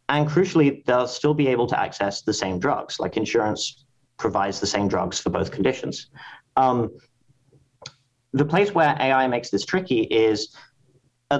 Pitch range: 115-150 Hz